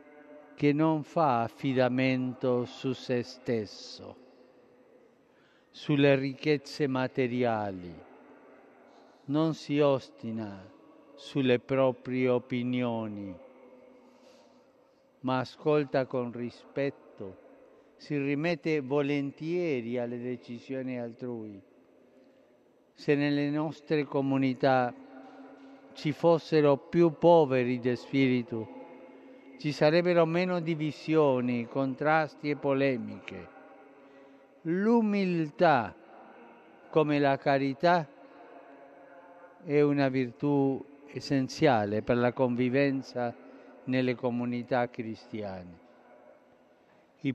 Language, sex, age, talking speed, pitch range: Italian, male, 50-69, 75 wpm, 125-160 Hz